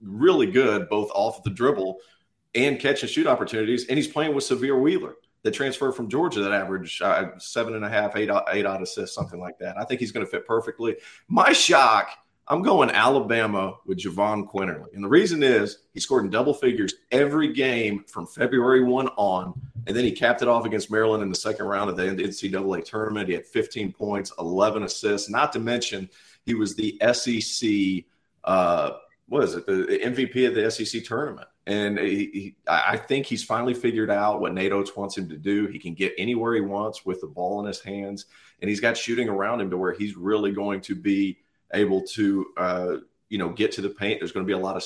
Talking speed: 215 wpm